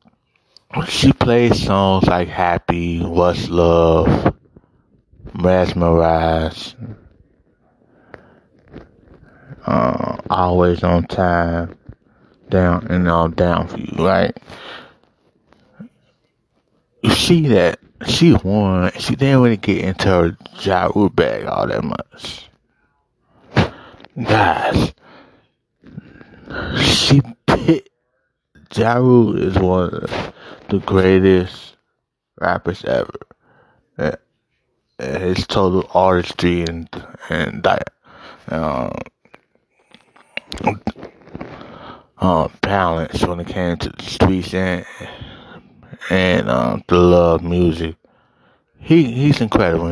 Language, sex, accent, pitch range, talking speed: English, male, American, 85-105 Hz, 90 wpm